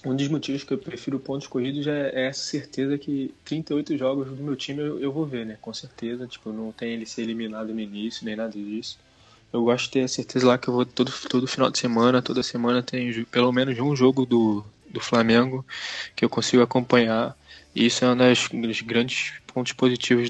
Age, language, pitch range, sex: 20-39, Portuguese, 110-130 Hz, male